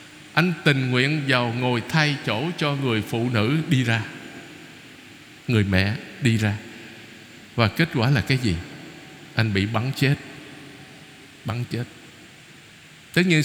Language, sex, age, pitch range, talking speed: Vietnamese, male, 60-79, 135-180 Hz, 140 wpm